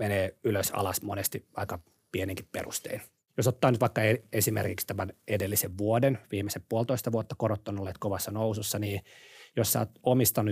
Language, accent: Finnish, native